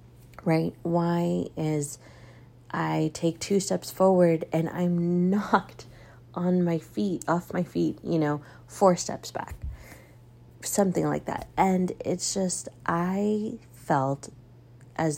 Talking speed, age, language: 125 wpm, 30-49, English